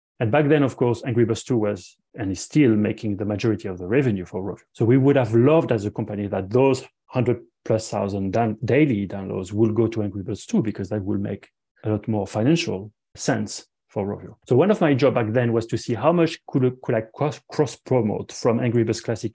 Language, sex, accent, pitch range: English, male, French, 105-130 Hz